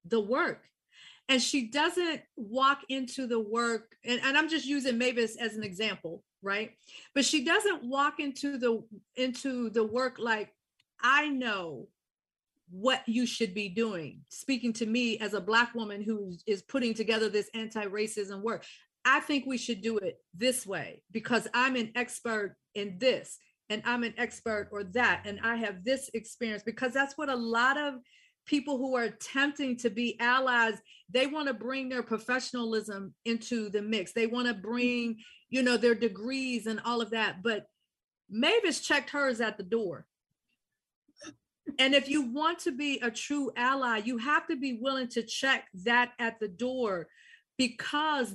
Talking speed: 170 wpm